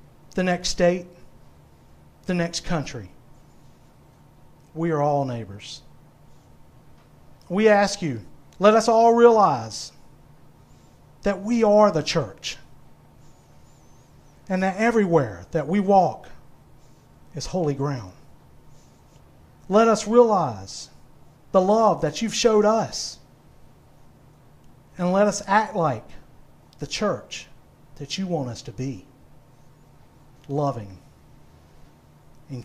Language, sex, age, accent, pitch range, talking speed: English, male, 50-69, American, 140-200 Hz, 100 wpm